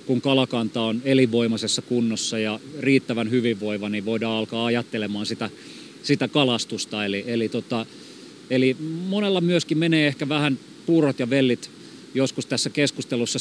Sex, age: male, 30-49